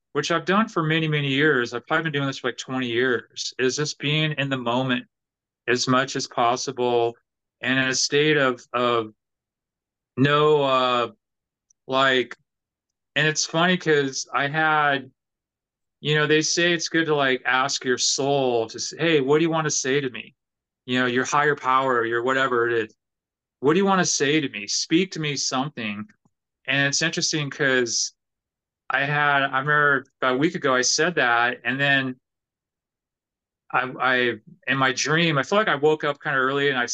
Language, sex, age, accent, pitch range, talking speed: English, male, 30-49, American, 125-155 Hz, 190 wpm